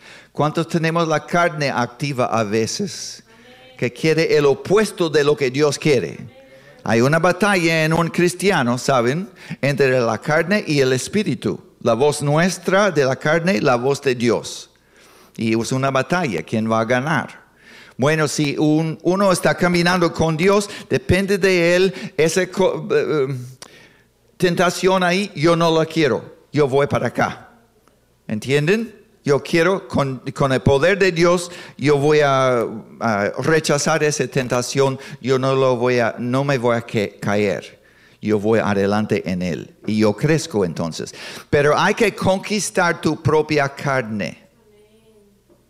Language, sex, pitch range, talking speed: English, male, 125-175 Hz, 145 wpm